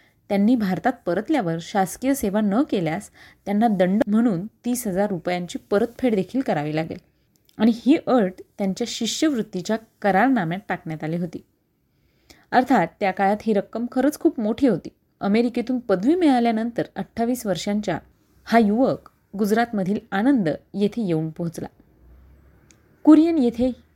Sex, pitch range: female, 185-240 Hz